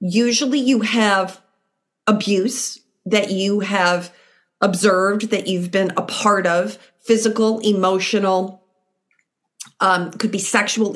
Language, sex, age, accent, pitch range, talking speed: English, female, 40-59, American, 185-230 Hz, 110 wpm